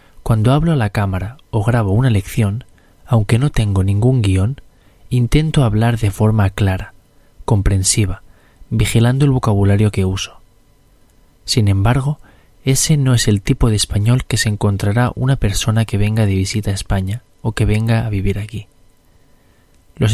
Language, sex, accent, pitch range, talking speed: Spanish, male, Spanish, 100-130 Hz, 155 wpm